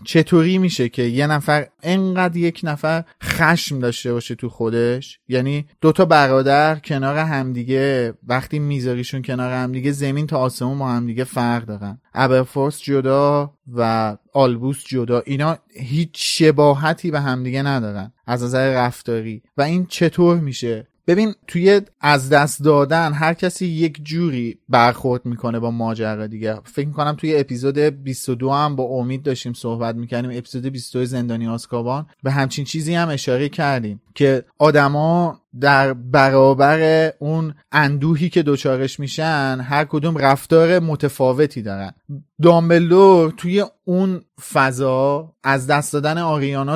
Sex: male